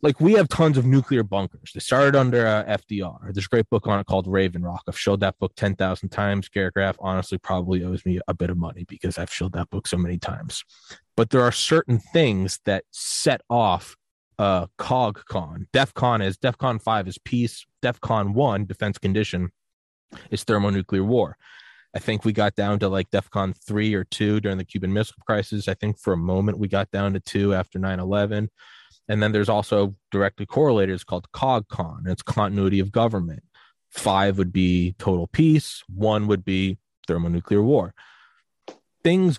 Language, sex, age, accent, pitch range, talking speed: English, male, 20-39, American, 95-110 Hz, 180 wpm